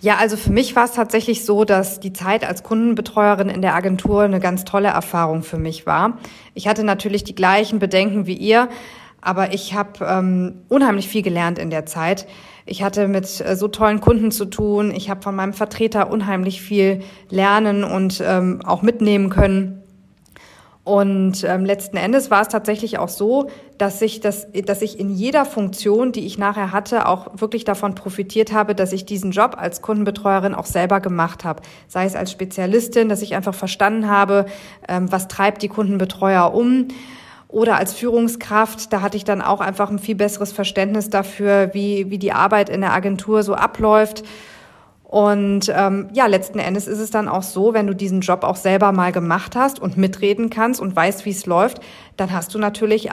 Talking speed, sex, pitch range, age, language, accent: 185 wpm, female, 190-215 Hz, 40-59, German, German